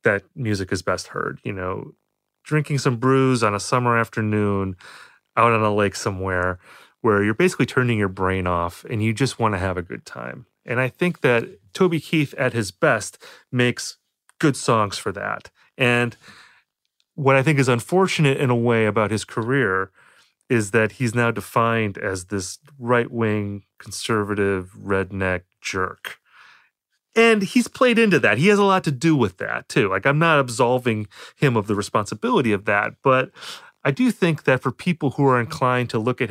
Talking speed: 180 wpm